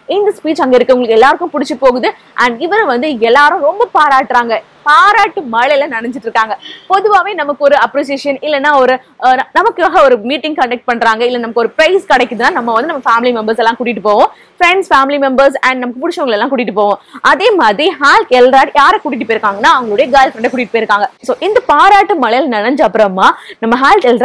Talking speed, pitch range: 75 wpm, 235-315 Hz